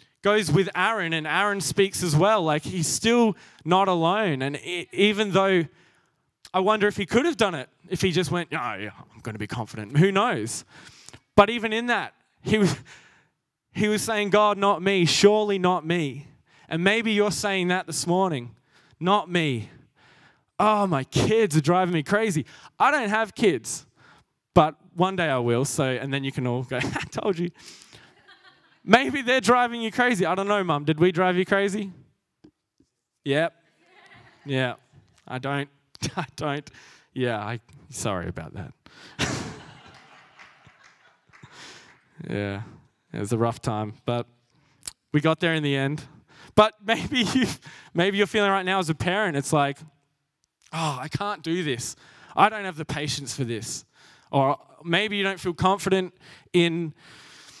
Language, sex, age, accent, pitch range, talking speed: English, male, 20-39, Australian, 140-205 Hz, 160 wpm